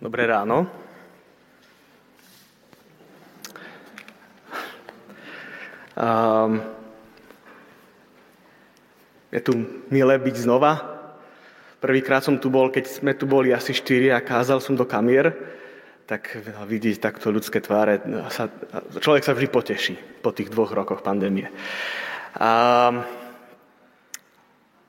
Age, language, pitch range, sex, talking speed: 30-49, Slovak, 130-165 Hz, male, 90 wpm